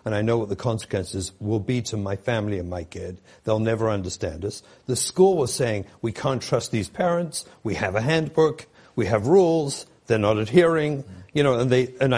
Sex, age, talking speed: male, 60-79, 205 wpm